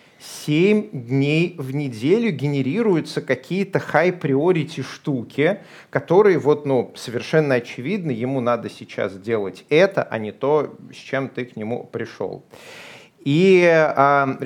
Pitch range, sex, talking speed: 120-150 Hz, male, 130 wpm